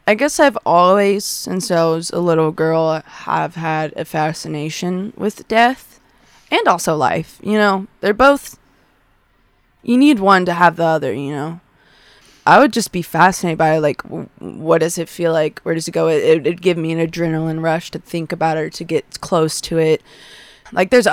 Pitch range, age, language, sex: 160-190 Hz, 20-39, English, female